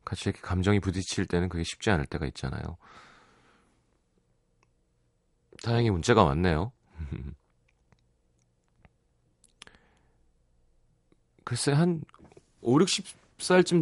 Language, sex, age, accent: Korean, male, 40-59, native